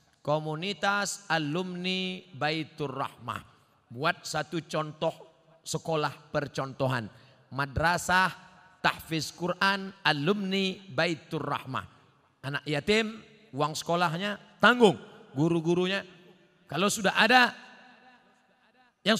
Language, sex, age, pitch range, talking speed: Indonesian, male, 40-59, 150-215 Hz, 70 wpm